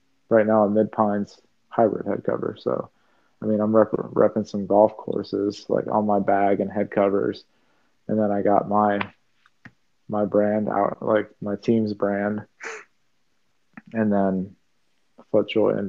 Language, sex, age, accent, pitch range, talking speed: English, male, 20-39, American, 105-115 Hz, 150 wpm